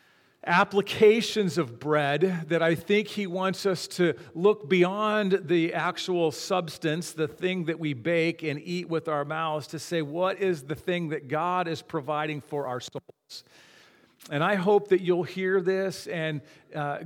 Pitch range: 140-180 Hz